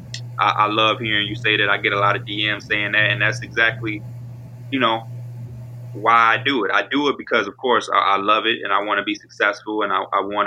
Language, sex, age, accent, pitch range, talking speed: English, male, 20-39, American, 110-125 Hz, 235 wpm